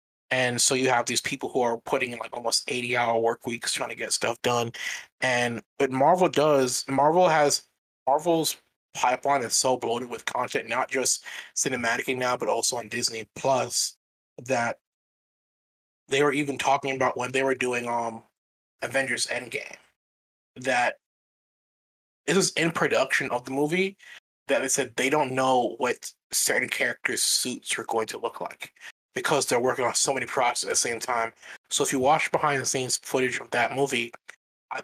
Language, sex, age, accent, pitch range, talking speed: English, male, 20-39, American, 125-145 Hz, 170 wpm